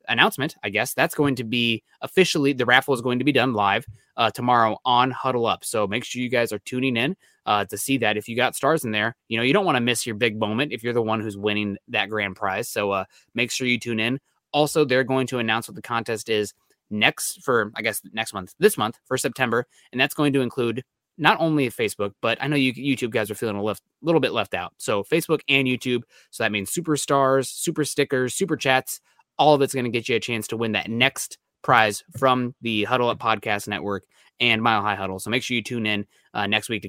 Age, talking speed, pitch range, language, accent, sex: 20-39, 245 wpm, 110-135 Hz, English, American, male